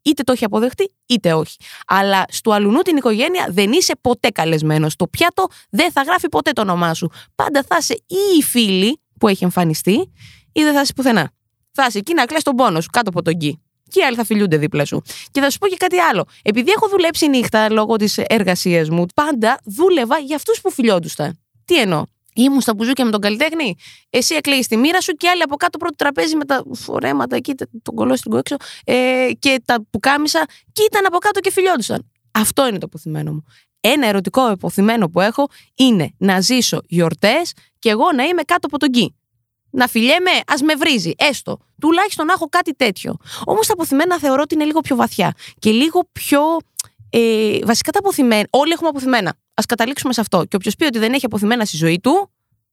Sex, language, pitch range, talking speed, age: female, Greek, 195-320 Hz, 205 wpm, 20-39